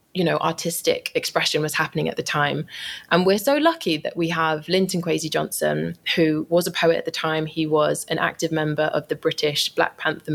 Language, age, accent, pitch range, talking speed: English, 20-39, British, 150-175 Hz, 210 wpm